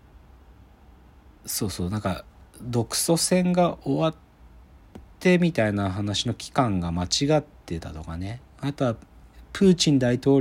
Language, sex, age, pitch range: Japanese, male, 40-59, 85-145 Hz